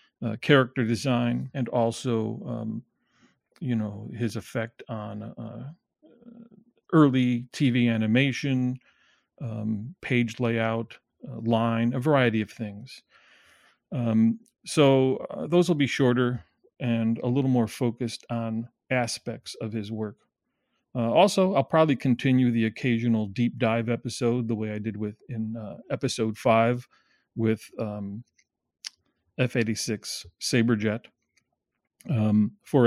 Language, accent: English, American